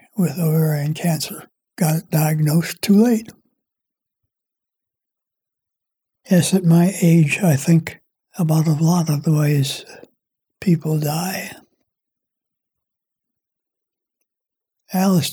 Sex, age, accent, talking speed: male, 60-79, American, 85 wpm